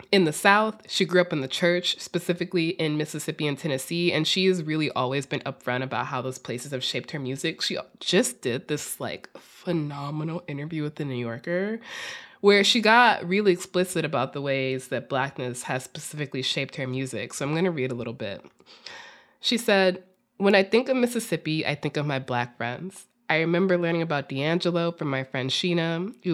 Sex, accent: female, American